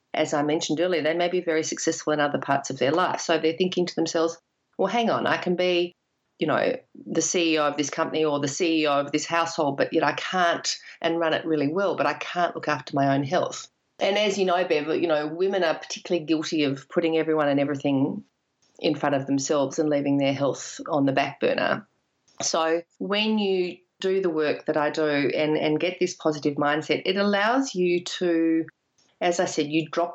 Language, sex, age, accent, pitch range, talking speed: English, female, 40-59, Australian, 145-175 Hz, 220 wpm